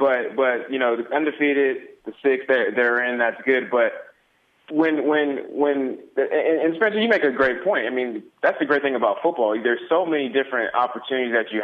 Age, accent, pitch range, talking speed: 20-39, American, 115-145 Hz, 205 wpm